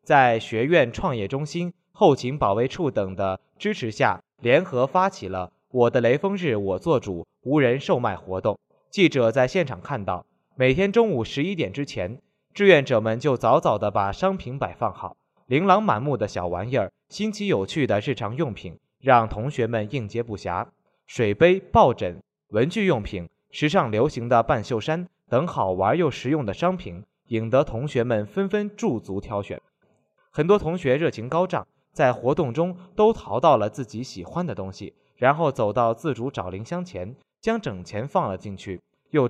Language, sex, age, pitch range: Chinese, male, 20-39, 110-175 Hz